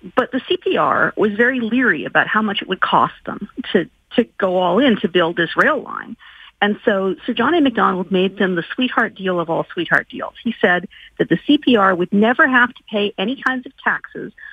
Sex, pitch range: female, 195-255 Hz